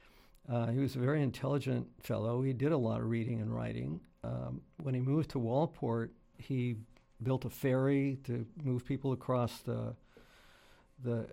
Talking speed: 165 wpm